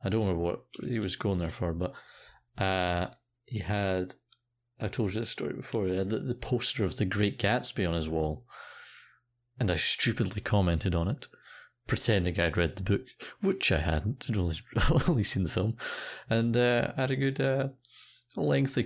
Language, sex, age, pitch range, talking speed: English, male, 30-49, 95-120 Hz, 185 wpm